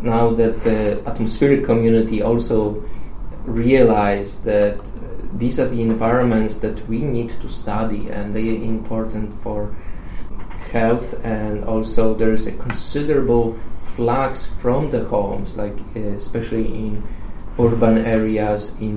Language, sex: English, male